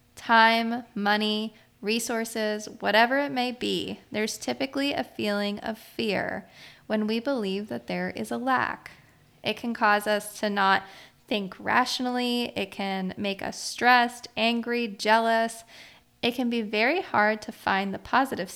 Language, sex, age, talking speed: English, female, 20-39, 145 wpm